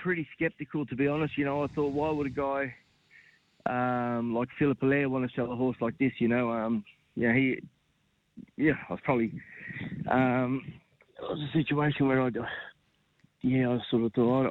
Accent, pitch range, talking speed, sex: Australian, 120-145 Hz, 185 wpm, male